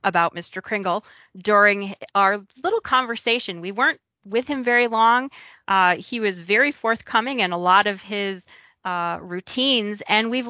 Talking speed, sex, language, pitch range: 155 wpm, female, English, 180-240 Hz